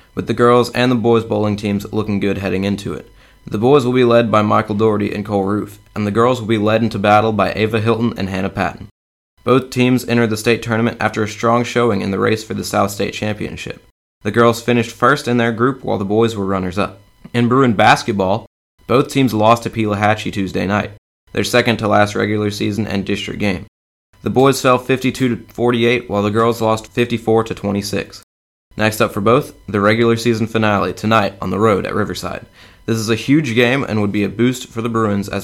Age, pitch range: 20-39, 100-120 Hz